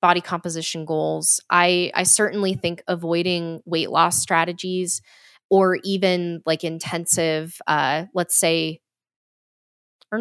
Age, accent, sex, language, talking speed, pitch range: 10-29, American, female, English, 110 wpm, 160-190 Hz